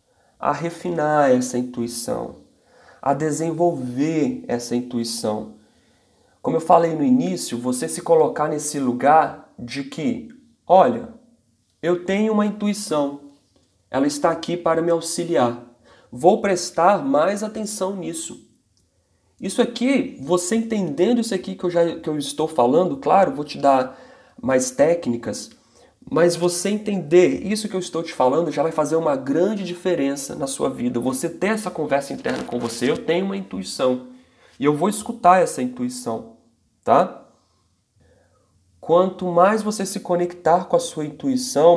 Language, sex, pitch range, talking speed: Portuguese, male, 125-185 Hz, 145 wpm